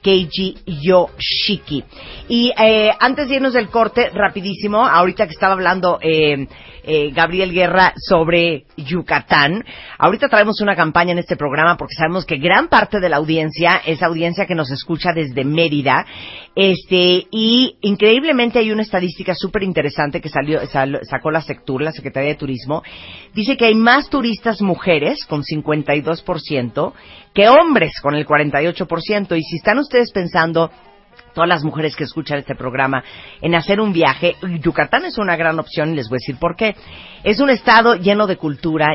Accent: Mexican